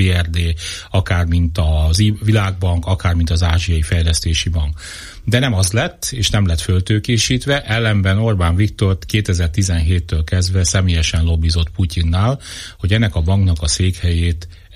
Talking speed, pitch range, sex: 135 wpm, 85-105 Hz, male